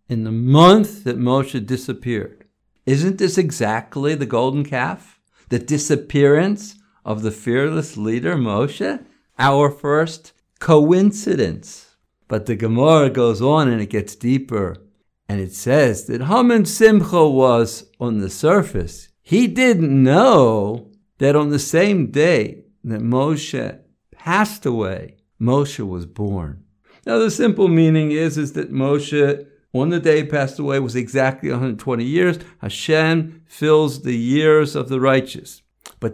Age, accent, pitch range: 60-79, American, 120-160 Hz